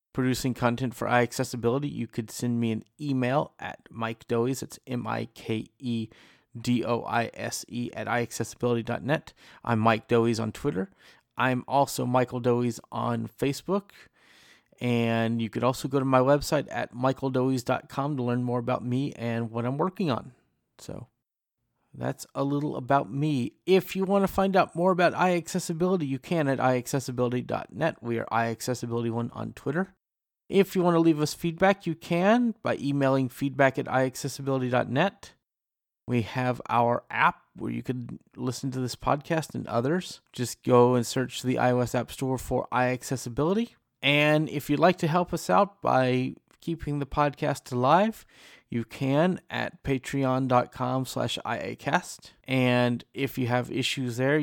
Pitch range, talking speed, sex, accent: 120-145 Hz, 150 wpm, male, American